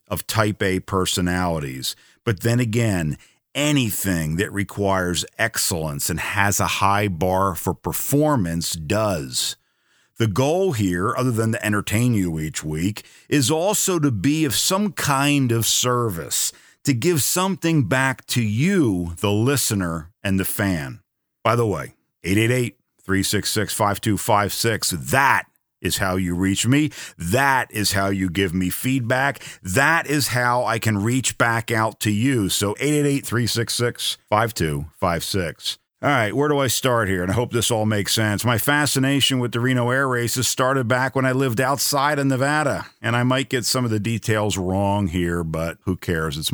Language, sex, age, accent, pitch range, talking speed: English, male, 50-69, American, 95-130 Hz, 155 wpm